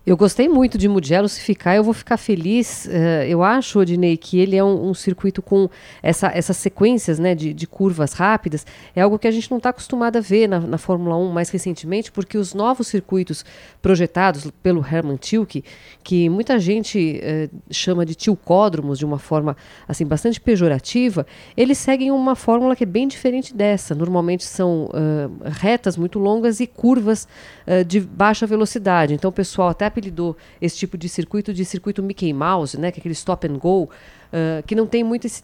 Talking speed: 190 wpm